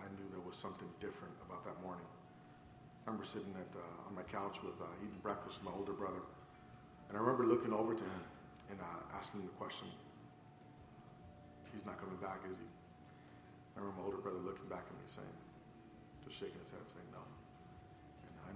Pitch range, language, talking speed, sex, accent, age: 105-120 Hz, English, 200 wpm, male, American, 40-59